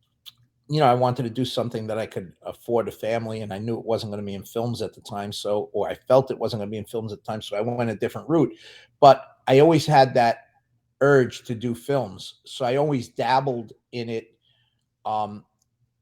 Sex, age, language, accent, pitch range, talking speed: male, 30-49, English, American, 110-130 Hz, 225 wpm